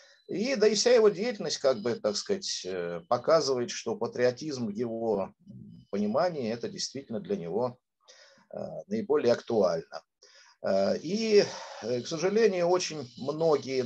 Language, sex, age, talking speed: Russian, male, 50-69, 115 wpm